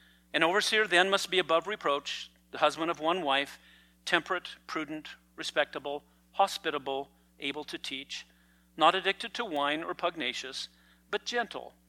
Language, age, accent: English, 50-69, American